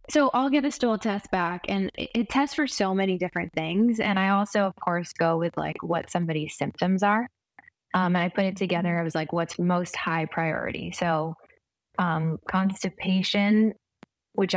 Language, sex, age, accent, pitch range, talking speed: English, female, 20-39, American, 170-205 Hz, 180 wpm